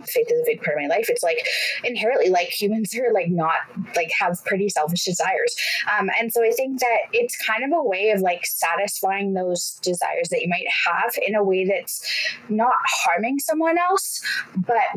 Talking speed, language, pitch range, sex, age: 200 wpm, English, 180-235 Hz, female, 20-39